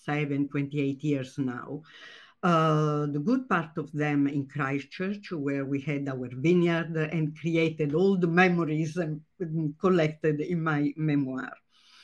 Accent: native